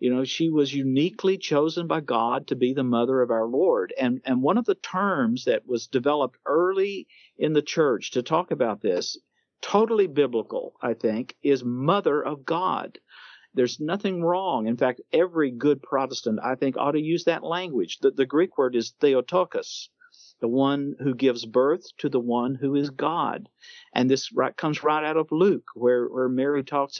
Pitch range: 125-160 Hz